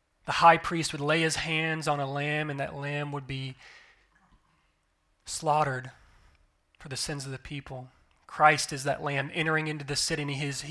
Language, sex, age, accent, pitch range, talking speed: English, male, 30-49, American, 140-165 Hz, 185 wpm